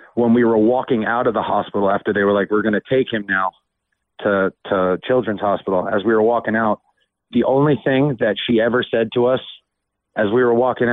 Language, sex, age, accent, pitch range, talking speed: English, male, 30-49, American, 100-115 Hz, 220 wpm